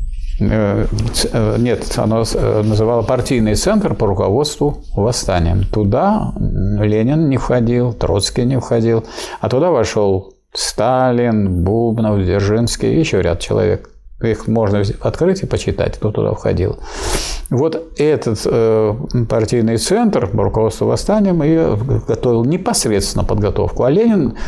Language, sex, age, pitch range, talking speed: Russian, male, 50-69, 105-130 Hz, 115 wpm